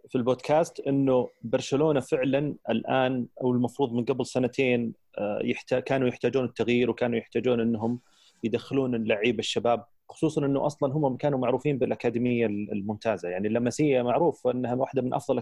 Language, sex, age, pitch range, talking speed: Arabic, male, 30-49, 115-135 Hz, 140 wpm